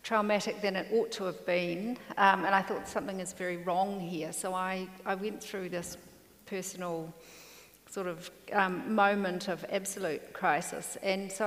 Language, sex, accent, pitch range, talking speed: English, female, Australian, 190-230 Hz, 165 wpm